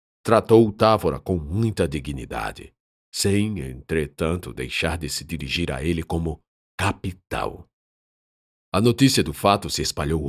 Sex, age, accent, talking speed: male, 50-69, Brazilian, 120 wpm